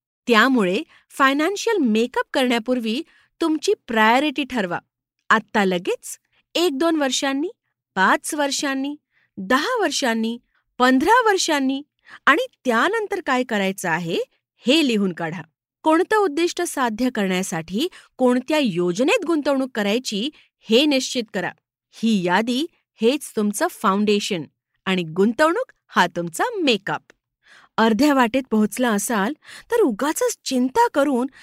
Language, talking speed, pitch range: Marathi, 95 wpm, 220-325 Hz